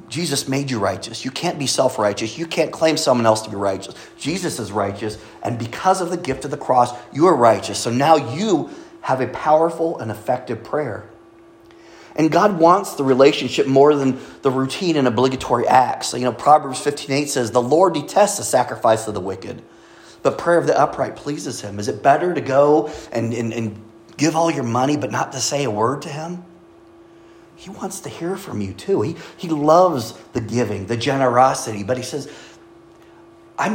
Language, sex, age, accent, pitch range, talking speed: English, male, 30-49, American, 120-165 Hz, 195 wpm